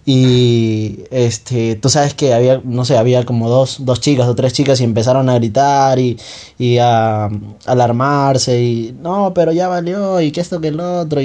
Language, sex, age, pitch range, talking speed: Spanish, male, 20-39, 115-150 Hz, 190 wpm